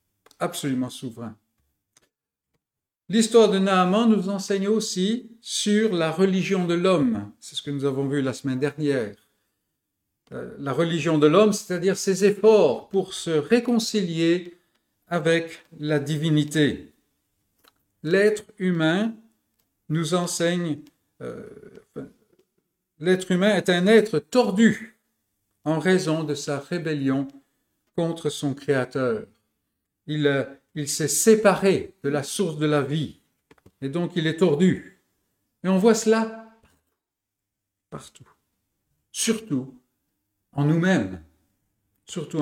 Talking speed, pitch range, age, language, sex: 110 wpm, 145-205 Hz, 50-69, French, male